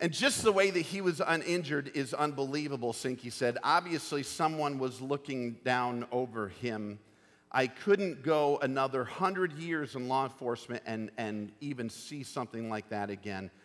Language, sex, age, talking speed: English, male, 50-69, 160 wpm